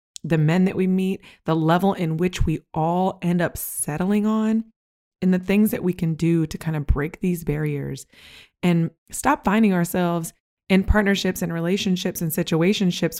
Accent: American